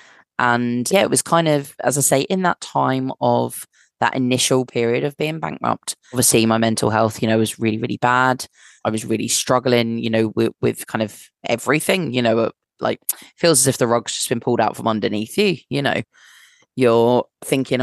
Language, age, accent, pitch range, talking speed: English, 20-39, British, 115-135 Hz, 200 wpm